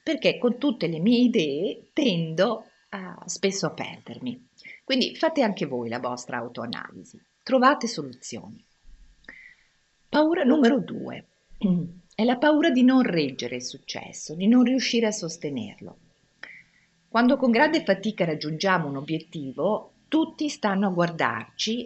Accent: native